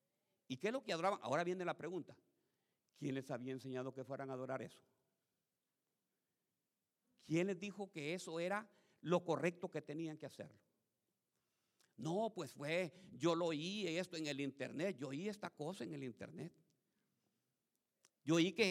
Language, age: Spanish, 50-69